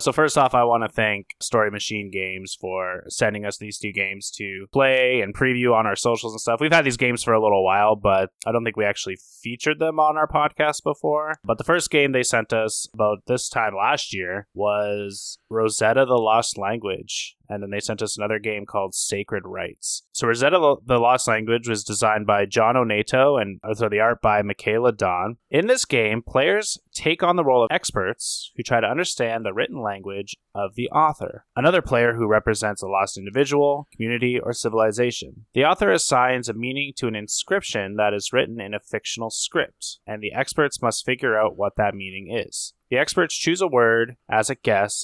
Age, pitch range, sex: 20-39, 105-130 Hz, male